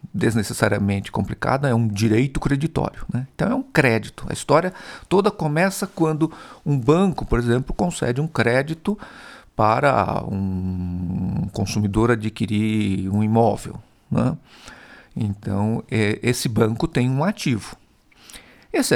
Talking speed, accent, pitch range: 115 wpm, Brazilian, 105-150 Hz